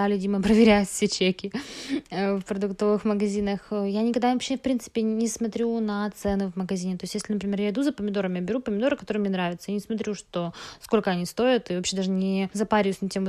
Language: Russian